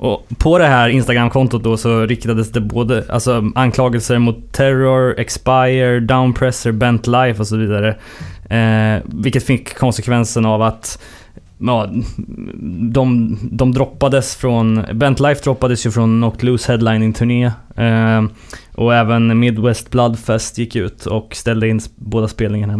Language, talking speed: Swedish, 140 wpm